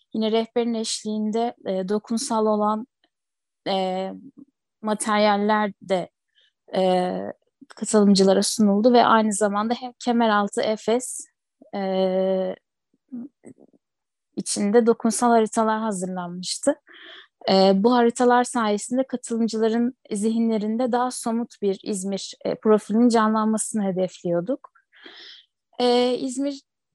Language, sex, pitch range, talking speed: Turkish, female, 200-240 Hz, 85 wpm